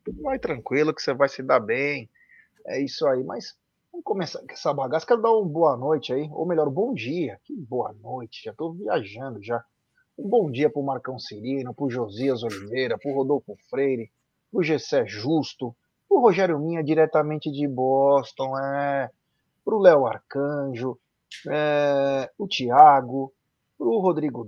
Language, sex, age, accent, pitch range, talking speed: Portuguese, male, 30-49, Brazilian, 135-180 Hz, 175 wpm